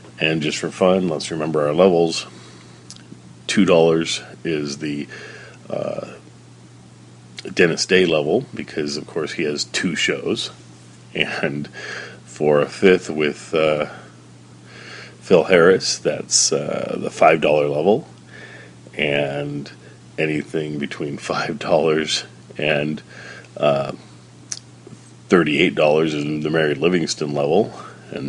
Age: 40-59